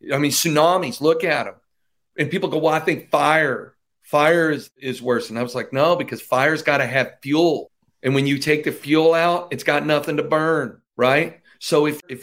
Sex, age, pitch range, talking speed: male, 40-59, 115-155 Hz, 215 wpm